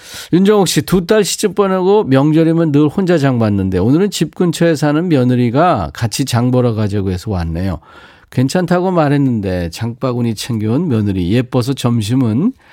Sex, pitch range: male, 105-150 Hz